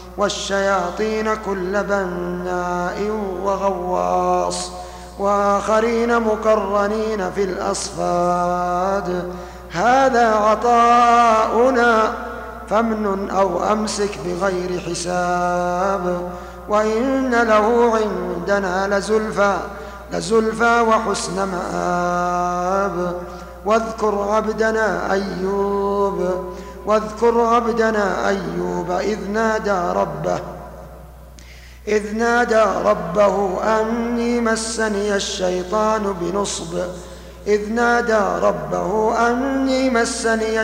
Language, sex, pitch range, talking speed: Arabic, male, 180-220 Hz, 65 wpm